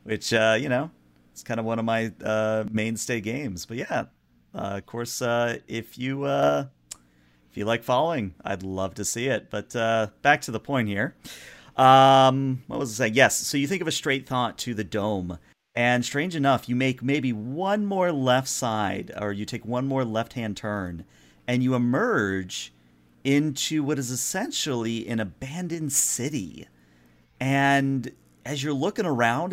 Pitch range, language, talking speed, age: 105-135 Hz, English, 175 wpm, 40-59